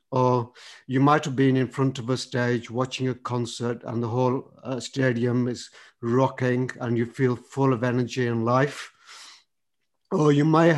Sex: male